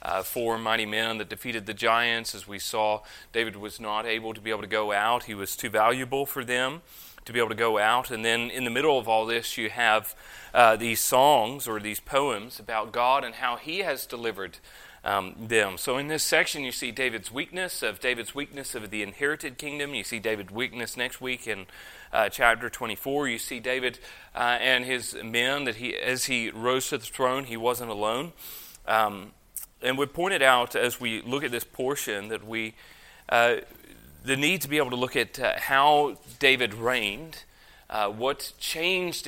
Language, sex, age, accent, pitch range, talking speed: English, male, 30-49, American, 110-135 Hz, 200 wpm